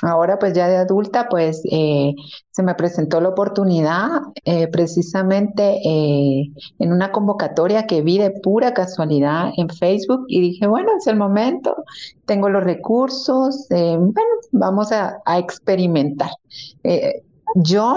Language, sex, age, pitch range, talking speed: Spanish, female, 40-59, 165-215 Hz, 140 wpm